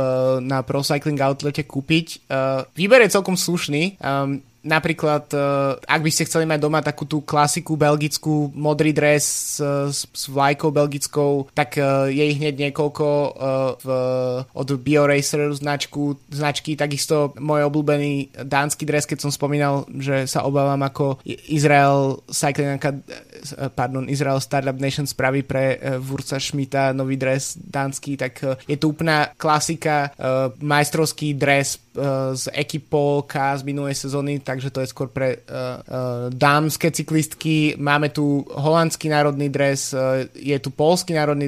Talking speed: 130 wpm